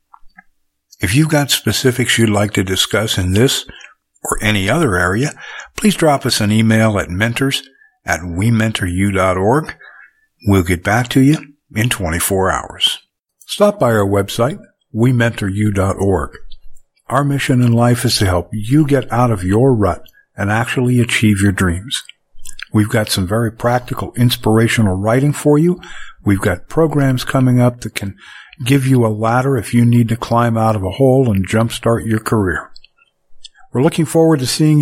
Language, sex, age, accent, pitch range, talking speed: English, male, 60-79, American, 105-135 Hz, 160 wpm